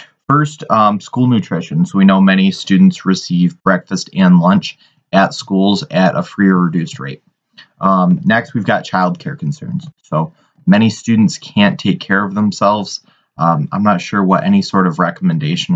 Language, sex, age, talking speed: English, male, 20-39, 170 wpm